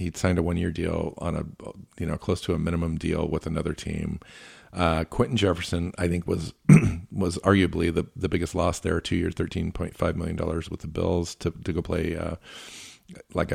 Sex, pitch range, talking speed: male, 85-95 Hz, 195 wpm